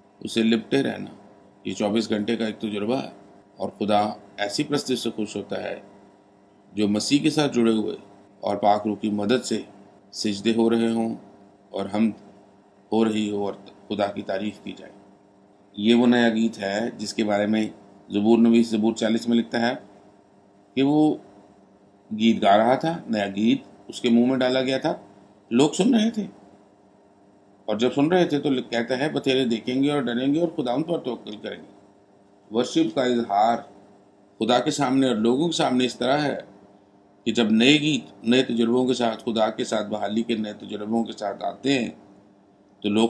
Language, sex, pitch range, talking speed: Urdu, male, 100-120 Hz, 180 wpm